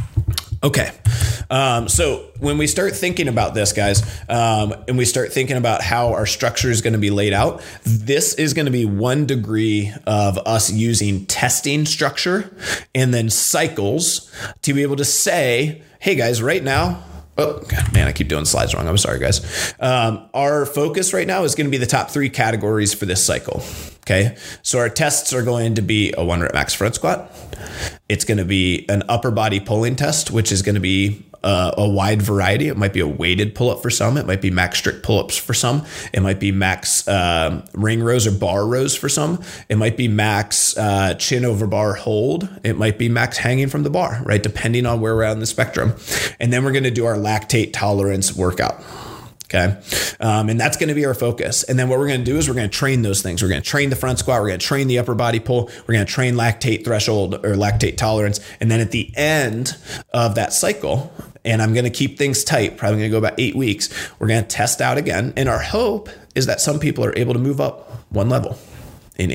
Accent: American